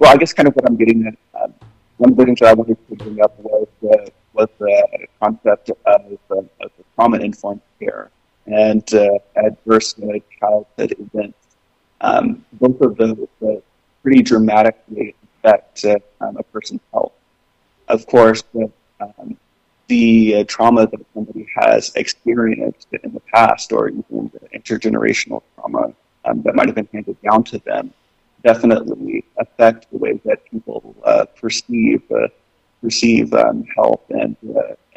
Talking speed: 150 wpm